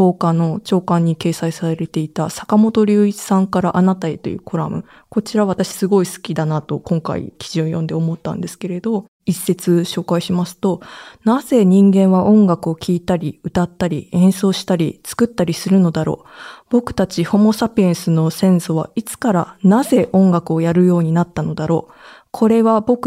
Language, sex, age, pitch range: Japanese, female, 20-39, 170-215 Hz